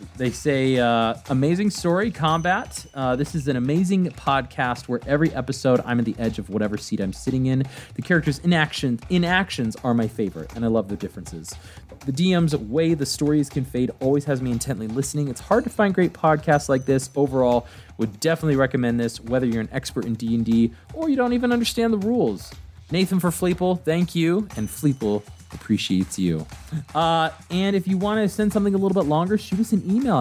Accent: American